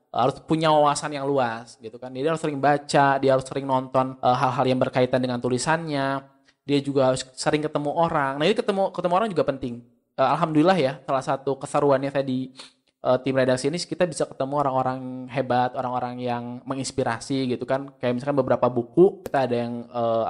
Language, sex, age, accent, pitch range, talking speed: Indonesian, male, 20-39, native, 125-155 Hz, 190 wpm